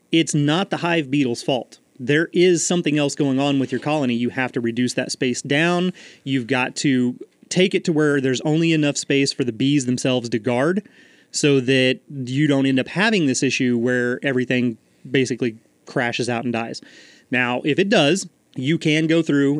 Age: 30-49